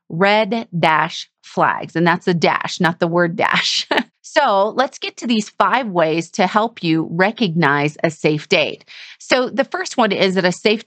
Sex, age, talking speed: female, 30-49, 180 wpm